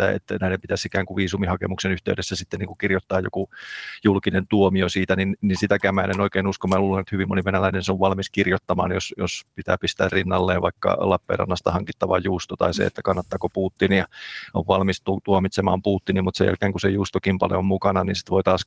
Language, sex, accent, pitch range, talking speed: Finnish, male, native, 95-100 Hz, 205 wpm